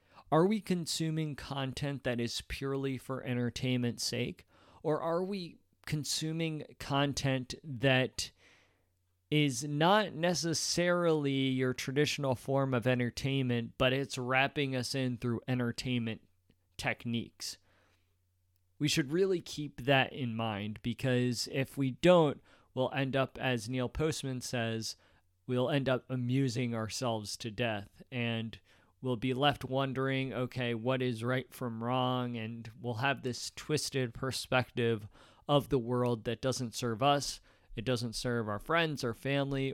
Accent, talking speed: American, 135 wpm